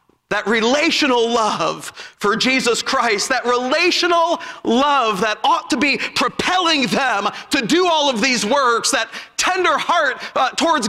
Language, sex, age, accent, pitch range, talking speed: English, male, 40-59, American, 270-345 Hz, 145 wpm